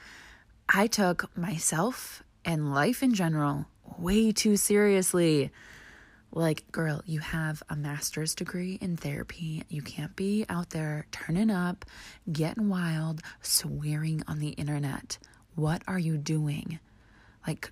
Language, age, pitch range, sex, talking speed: English, 20-39, 145-175 Hz, female, 125 wpm